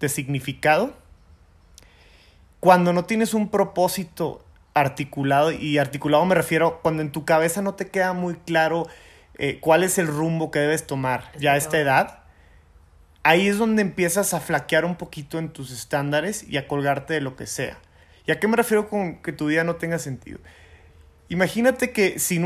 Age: 30-49